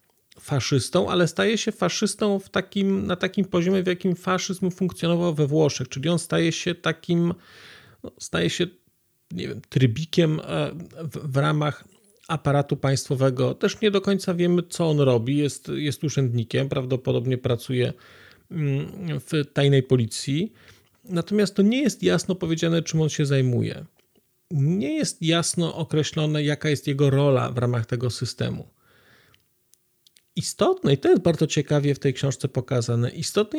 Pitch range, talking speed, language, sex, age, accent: 140-185 Hz, 135 wpm, Polish, male, 40-59, native